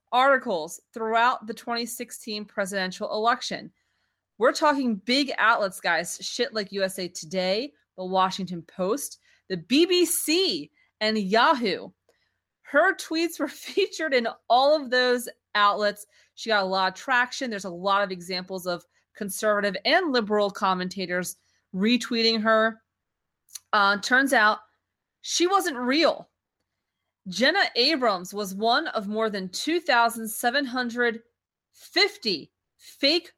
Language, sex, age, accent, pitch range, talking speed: English, female, 30-49, American, 205-285 Hz, 115 wpm